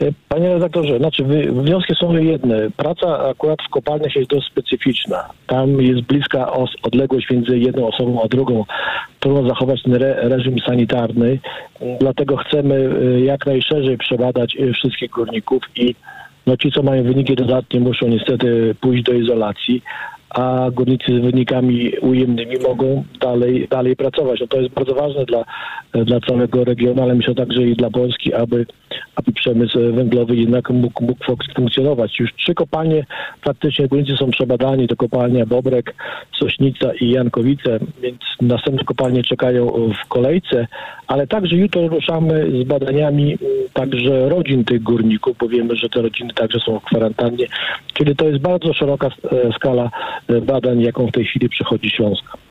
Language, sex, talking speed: Polish, male, 145 wpm